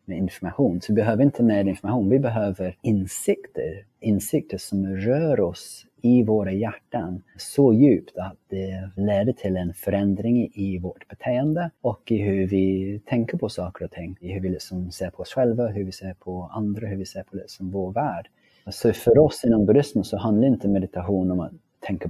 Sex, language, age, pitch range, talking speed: male, Swedish, 30-49, 95-115 Hz, 195 wpm